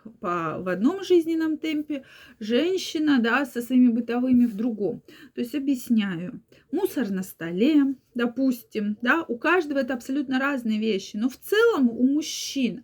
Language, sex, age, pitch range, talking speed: Russian, female, 30-49, 220-280 Hz, 145 wpm